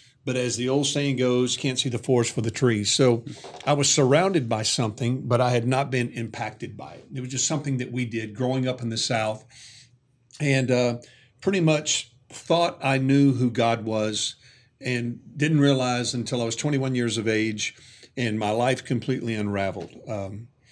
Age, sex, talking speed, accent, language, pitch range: 50-69, male, 190 wpm, American, English, 120-130 Hz